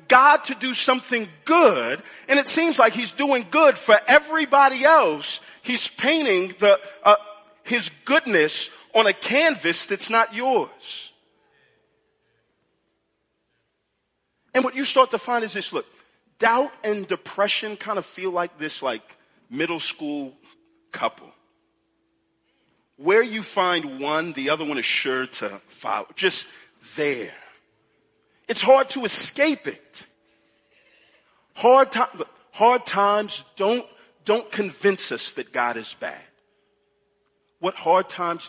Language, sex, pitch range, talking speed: English, male, 165-270 Hz, 125 wpm